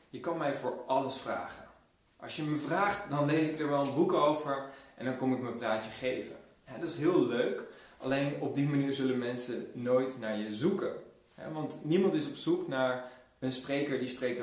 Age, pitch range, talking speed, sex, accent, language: 20-39, 125-155 Hz, 205 wpm, male, Dutch, Dutch